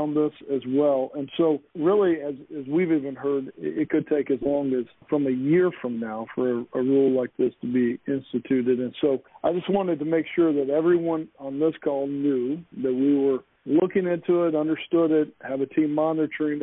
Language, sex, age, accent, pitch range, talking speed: English, male, 50-69, American, 130-155 Hz, 210 wpm